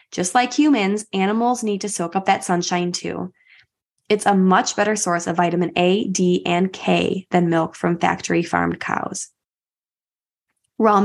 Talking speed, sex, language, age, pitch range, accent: 160 wpm, female, English, 20-39, 175-210 Hz, American